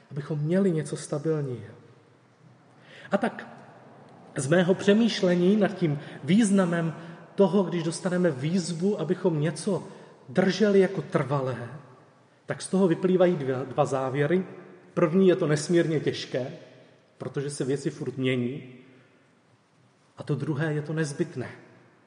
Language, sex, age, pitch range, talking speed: Czech, male, 30-49, 135-180 Hz, 120 wpm